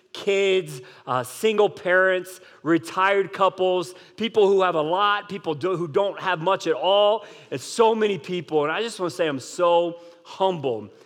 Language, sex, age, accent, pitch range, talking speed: English, male, 40-59, American, 170-220 Hz, 175 wpm